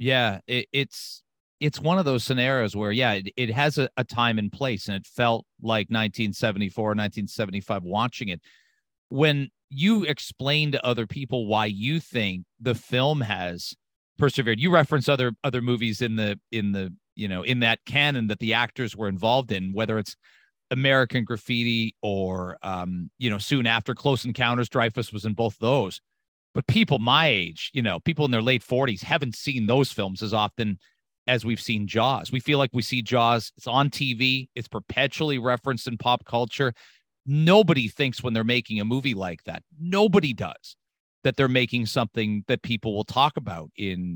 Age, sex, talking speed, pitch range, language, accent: 40-59, male, 180 wpm, 110-140 Hz, English, American